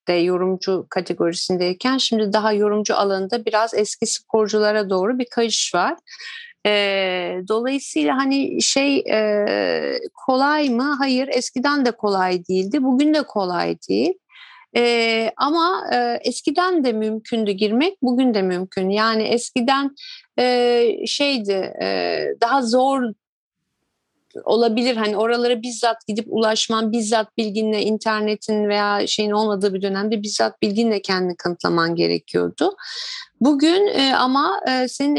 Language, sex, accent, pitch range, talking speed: Turkish, female, native, 210-270 Hz, 120 wpm